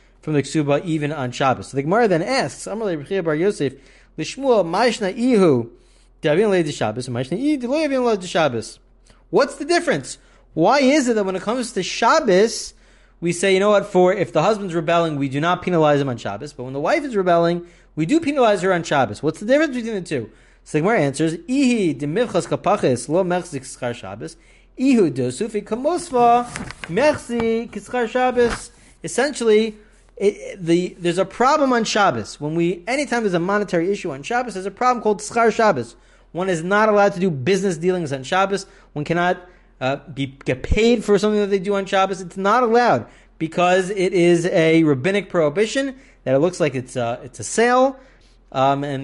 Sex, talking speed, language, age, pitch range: male, 155 wpm, English, 30-49, 150-220 Hz